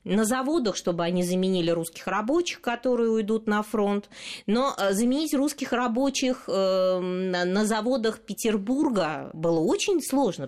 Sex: female